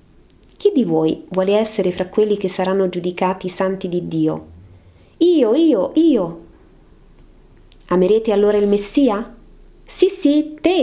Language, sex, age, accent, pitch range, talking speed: Italian, female, 30-49, native, 170-225 Hz, 125 wpm